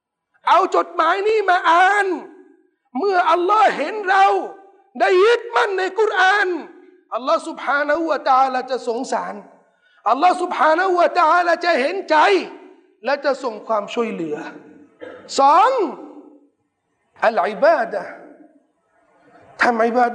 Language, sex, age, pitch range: Thai, male, 50-69, 290-370 Hz